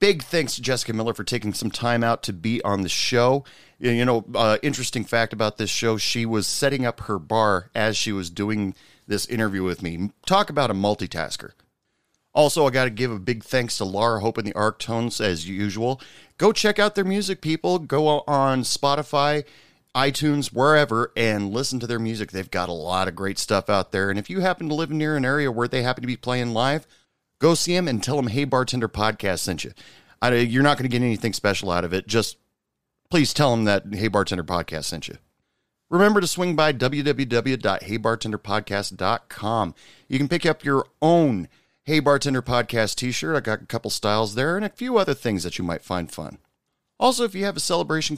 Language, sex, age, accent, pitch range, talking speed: English, male, 40-59, American, 105-145 Hz, 210 wpm